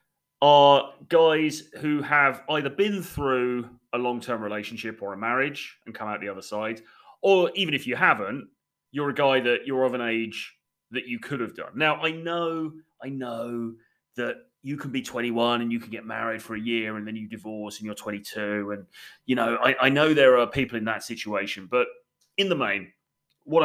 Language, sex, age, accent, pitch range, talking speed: English, male, 30-49, British, 110-145 Hz, 200 wpm